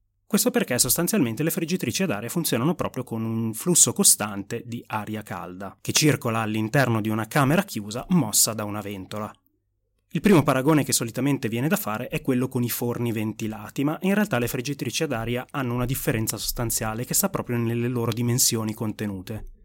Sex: male